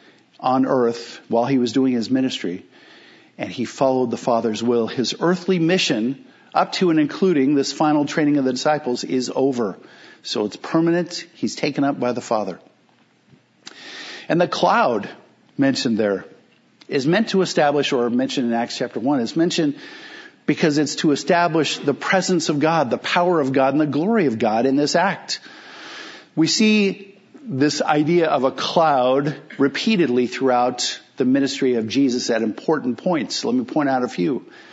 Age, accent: 50-69, American